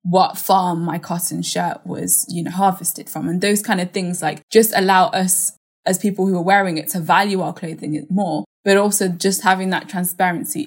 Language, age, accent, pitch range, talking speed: English, 10-29, British, 170-205 Hz, 200 wpm